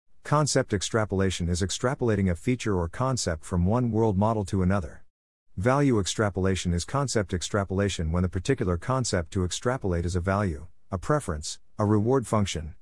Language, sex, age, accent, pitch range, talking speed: English, male, 50-69, American, 90-115 Hz, 155 wpm